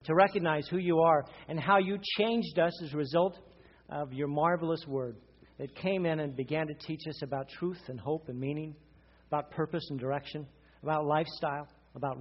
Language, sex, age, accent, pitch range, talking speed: English, male, 50-69, American, 135-170 Hz, 185 wpm